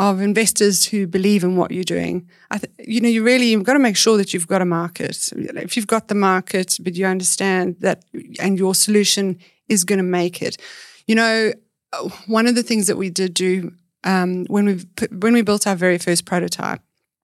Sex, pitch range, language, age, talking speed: female, 180-210 Hz, English, 30-49, 210 wpm